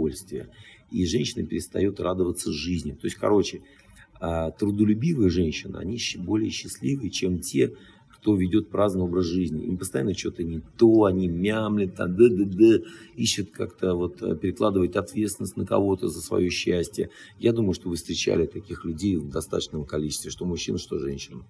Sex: male